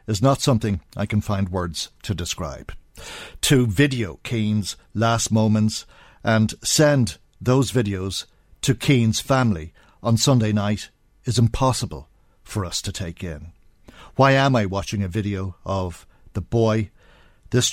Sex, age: male, 50-69